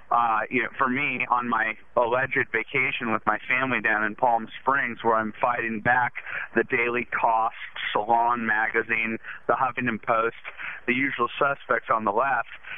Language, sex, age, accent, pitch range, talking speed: English, male, 40-59, American, 115-130 Hz, 160 wpm